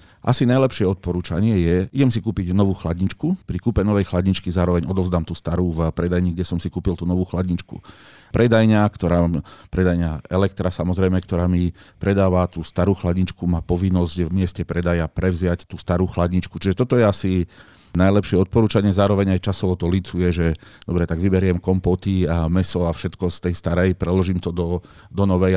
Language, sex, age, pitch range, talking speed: Slovak, male, 40-59, 85-100 Hz, 175 wpm